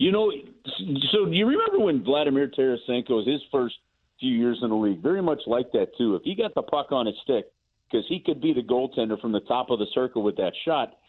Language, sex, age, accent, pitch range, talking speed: English, male, 50-69, American, 115-165 Hz, 245 wpm